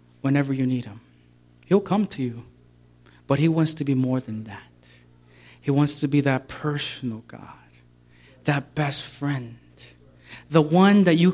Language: English